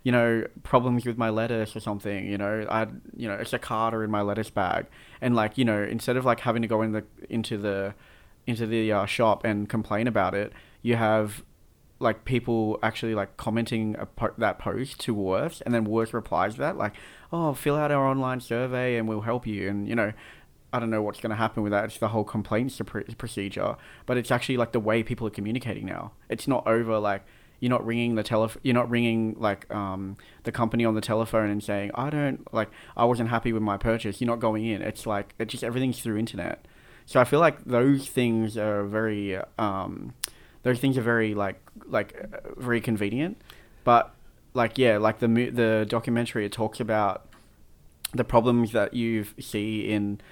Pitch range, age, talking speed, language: 105-120 Hz, 20-39, 205 wpm, English